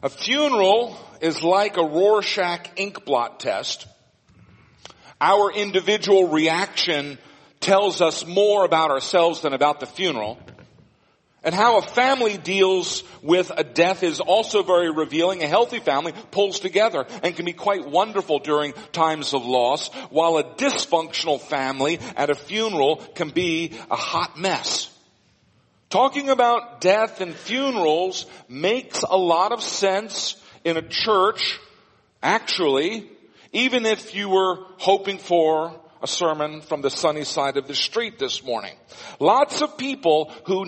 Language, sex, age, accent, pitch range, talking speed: English, male, 50-69, American, 160-225 Hz, 135 wpm